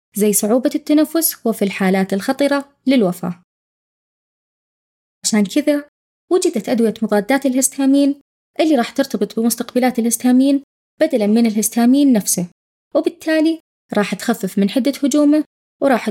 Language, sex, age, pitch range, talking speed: Arabic, female, 20-39, 210-285 Hz, 110 wpm